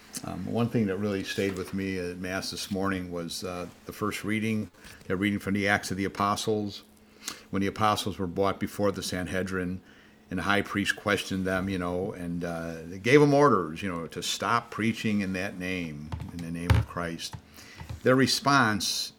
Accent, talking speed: American, 190 wpm